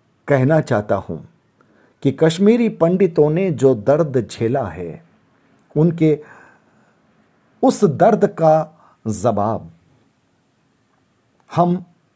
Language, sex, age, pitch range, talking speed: Hindi, male, 50-69, 110-165 Hz, 85 wpm